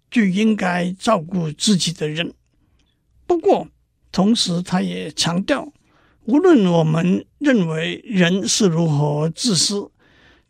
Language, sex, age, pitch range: Chinese, male, 60-79, 165-235 Hz